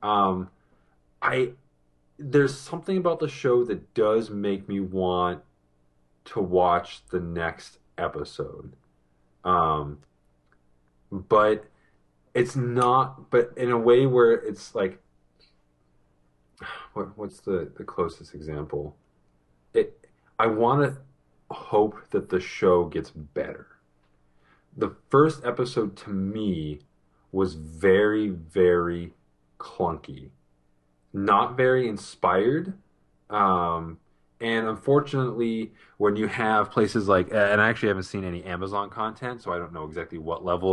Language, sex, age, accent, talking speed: English, male, 30-49, American, 115 wpm